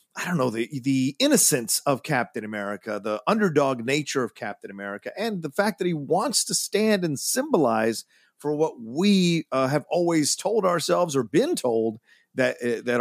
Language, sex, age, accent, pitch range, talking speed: English, male, 40-59, American, 125-195 Hz, 180 wpm